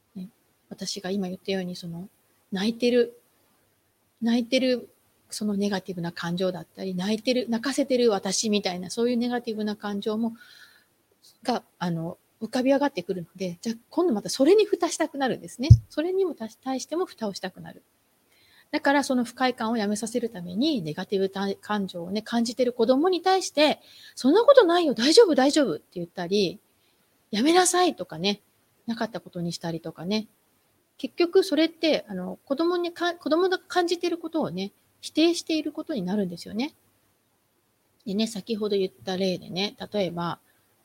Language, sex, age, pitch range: Japanese, female, 30-49, 195-295 Hz